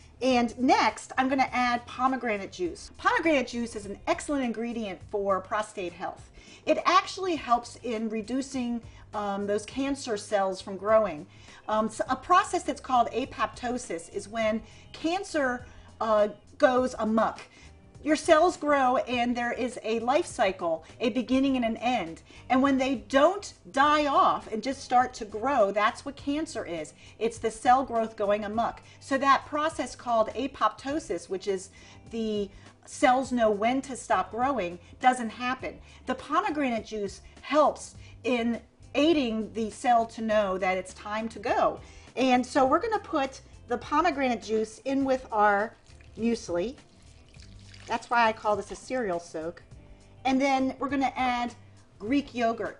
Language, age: English, 40-59